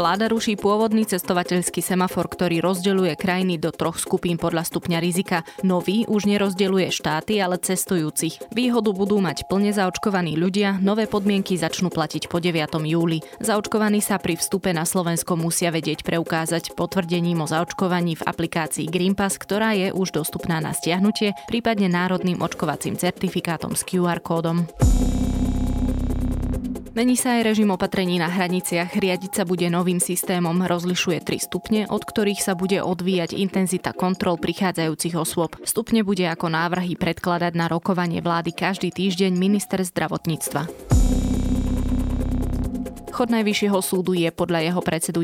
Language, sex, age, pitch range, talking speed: Slovak, female, 20-39, 165-195 Hz, 140 wpm